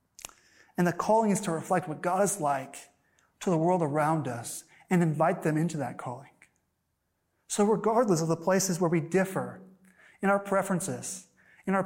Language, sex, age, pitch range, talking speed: English, male, 30-49, 165-210 Hz, 170 wpm